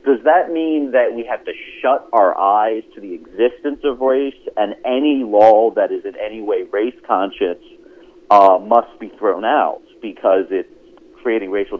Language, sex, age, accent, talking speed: English, male, 40-59, American, 170 wpm